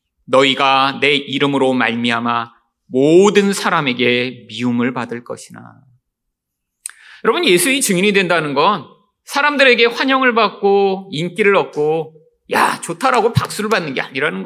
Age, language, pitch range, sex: 40-59, Korean, 135-230 Hz, male